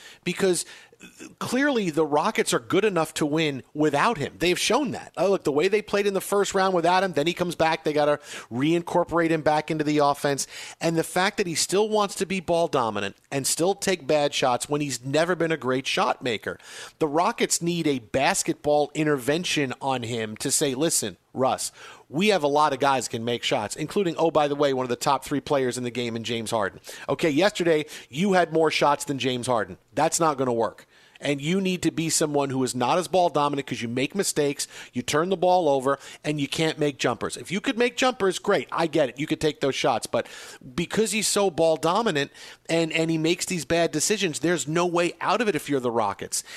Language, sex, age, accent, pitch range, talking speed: English, male, 40-59, American, 145-180 Hz, 225 wpm